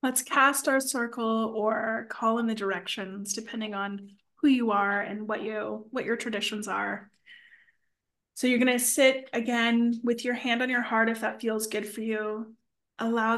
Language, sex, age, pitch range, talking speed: English, female, 20-39, 220-235 Hz, 175 wpm